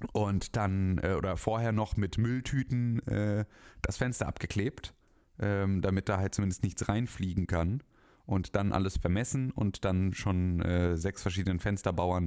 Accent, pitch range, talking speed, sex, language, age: German, 90-120 Hz, 145 wpm, male, German, 30-49